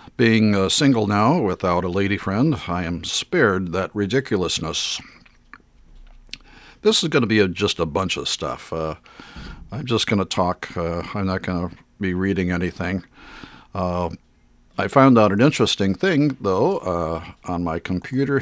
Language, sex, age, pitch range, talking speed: English, male, 50-69, 90-115 Hz, 150 wpm